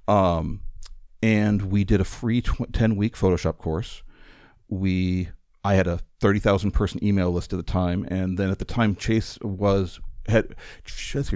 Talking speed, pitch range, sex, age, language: 150 wpm, 90-110 Hz, male, 50-69, English